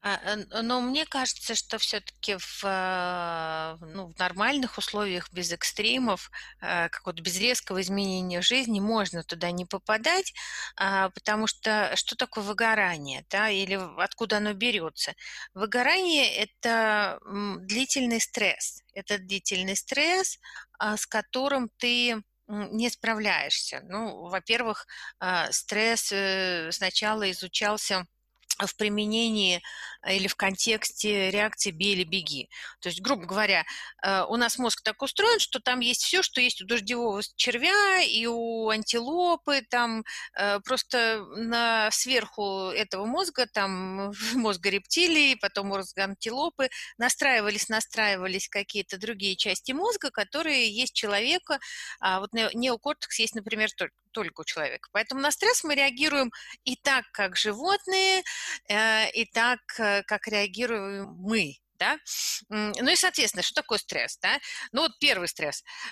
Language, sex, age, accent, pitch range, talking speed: Russian, female, 30-49, native, 195-250 Hz, 120 wpm